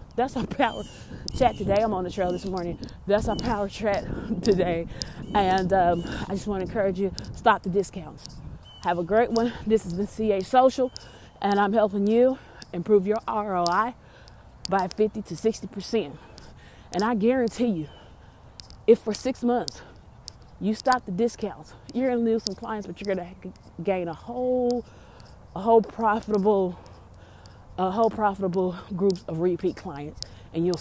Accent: American